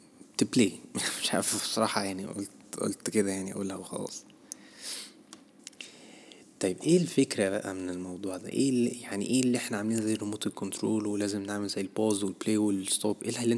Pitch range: 100-120 Hz